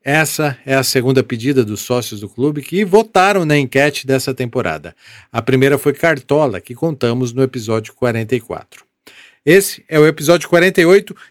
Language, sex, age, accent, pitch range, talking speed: Portuguese, male, 50-69, Brazilian, 125-170 Hz, 155 wpm